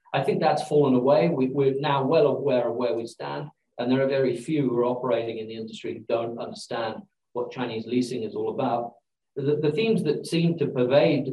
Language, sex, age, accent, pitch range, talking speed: English, male, 50-69, British, 120-145 Hz, 210 wpm